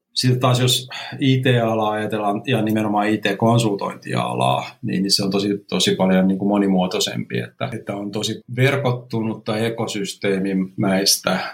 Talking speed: 120 wpm